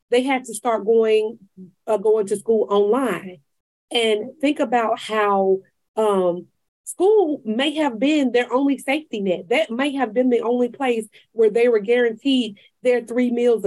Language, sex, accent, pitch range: English, female, American, 210-285 Hz